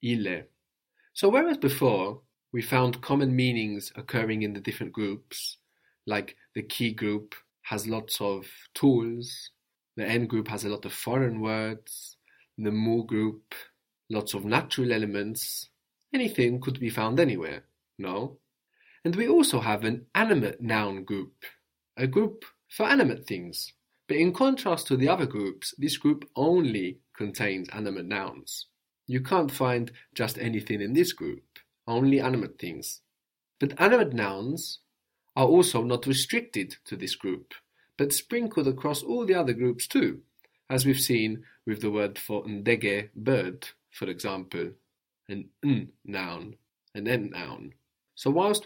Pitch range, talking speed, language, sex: 105-140 Hz, 145 wpm, English, male